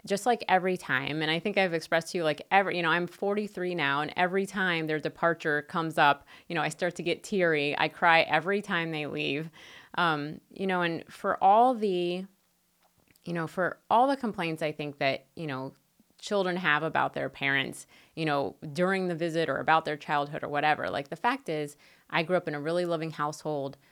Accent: American